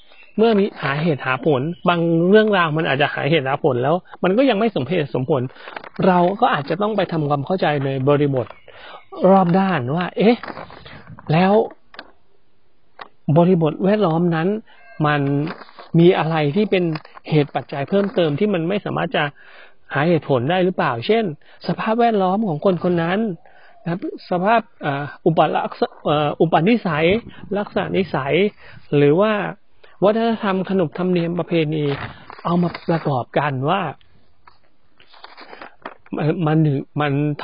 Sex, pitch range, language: male, 145-190 Hz, Thai